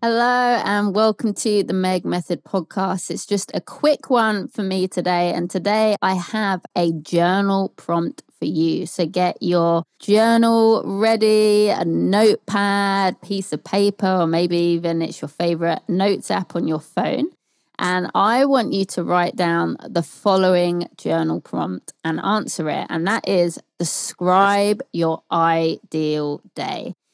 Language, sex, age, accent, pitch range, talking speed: English, female, 20-39, British, 170-215 Hz, 150 wpm